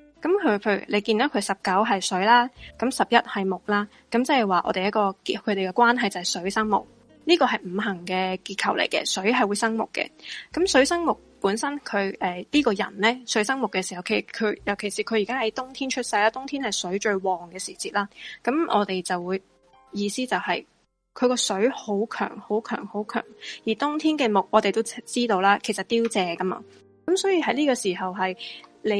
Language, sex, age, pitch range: Chinese, female, 20-39, 195-245 Hz